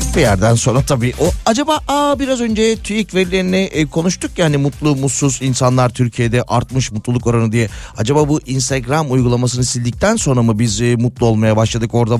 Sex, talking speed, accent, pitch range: male, 155 wpm, native, 115-150 Hz